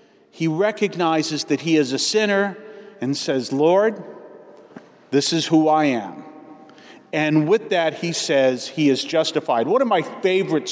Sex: male